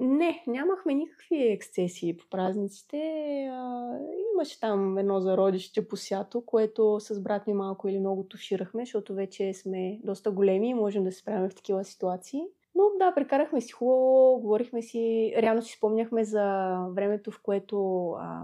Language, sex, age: Bulgarian, female, 20-39